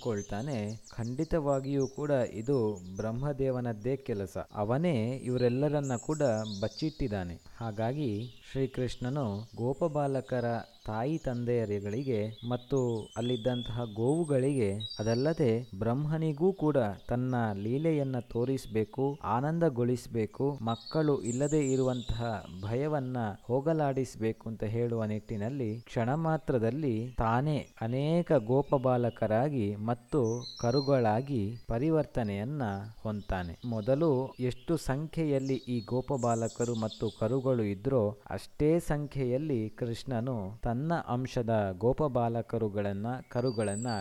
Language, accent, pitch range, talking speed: Kannada, native, 110-135 Hz, 80 wpm